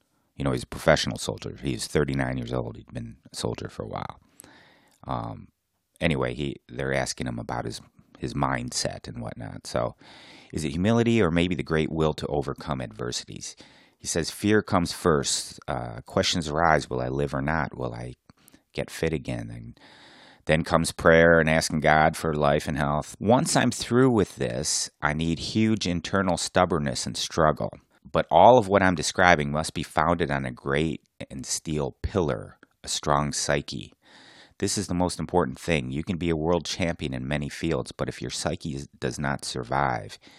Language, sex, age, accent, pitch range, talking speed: English, male, 30-49, American, 65-85 Hz, 180 wpm